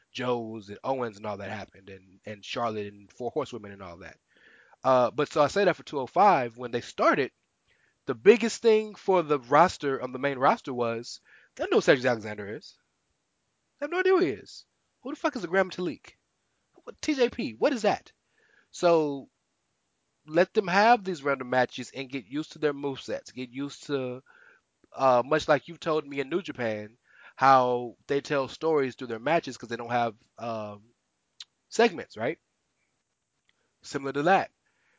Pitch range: 115-145 Hz